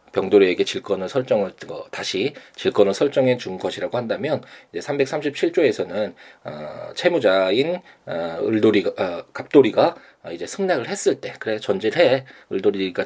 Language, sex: Korean, male